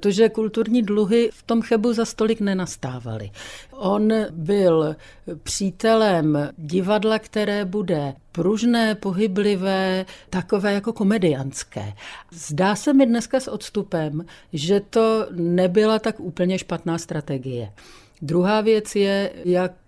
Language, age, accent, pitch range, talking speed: Czech, 50-69, native, 170-215 Hz, 115 wpm